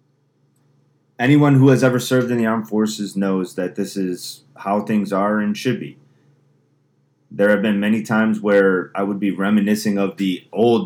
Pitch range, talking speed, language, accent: 100-130 Hz, 175 wpm, English, American